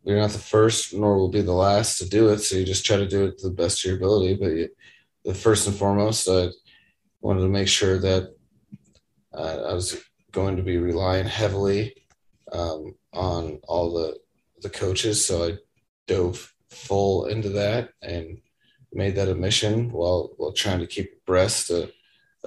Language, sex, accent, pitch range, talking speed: English, male, American, 90-105 Hz, 185 wpm